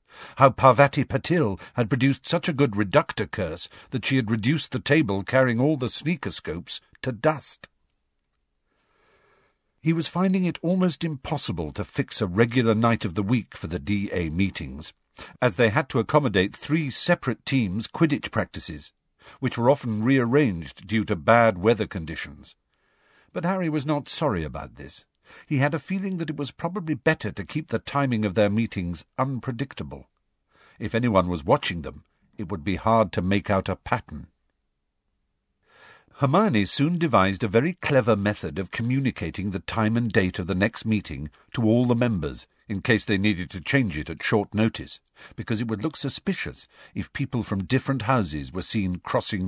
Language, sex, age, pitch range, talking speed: English, male, 50-69, 95-135 Hz, 170 wpm